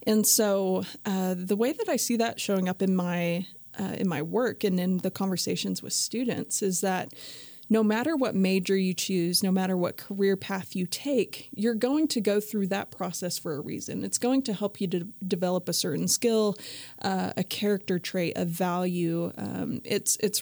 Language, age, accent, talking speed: English, 30-49, American, 195 wpm